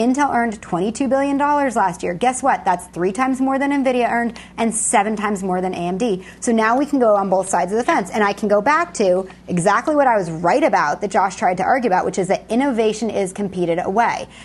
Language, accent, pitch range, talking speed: English, American, 190-255 Hz, 235 wpm